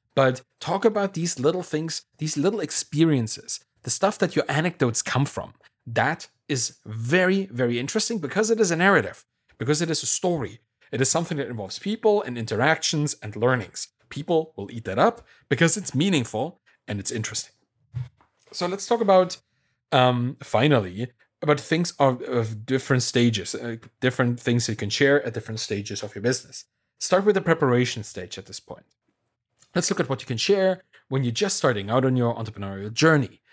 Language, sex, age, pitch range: English, male, 30-49, 115-160 Hz